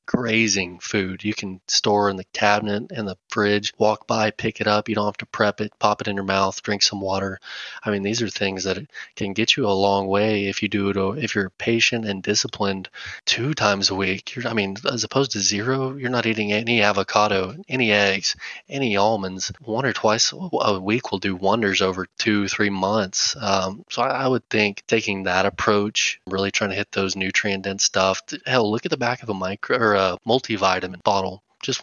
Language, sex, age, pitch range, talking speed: English, male, 20-39, 100-115 Hz, 215 wpm